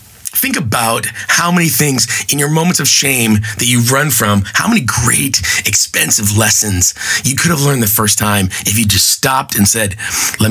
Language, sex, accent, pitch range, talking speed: English, male, American, 105-130 Hz, 190 wpm